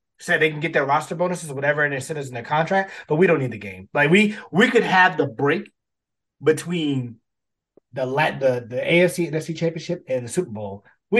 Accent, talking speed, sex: American, 225 wpm, male